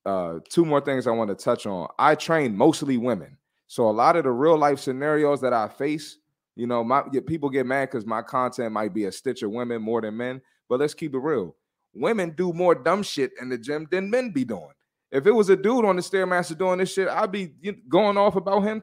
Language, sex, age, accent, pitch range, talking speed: English, male, 30-49, American, 125-190 Hz, 240 wpm